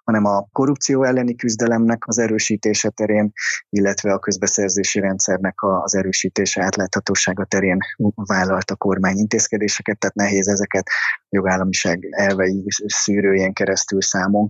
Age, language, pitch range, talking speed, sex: 20-39, Hungarian, 105-120 Hz, 115 wpm, male